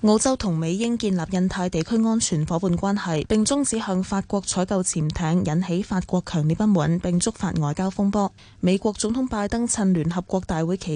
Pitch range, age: 170-215 Hz, 10-29